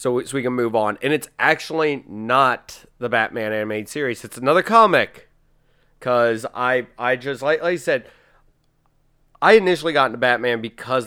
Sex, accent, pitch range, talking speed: male, American, 110-150 Hz, 170 wpm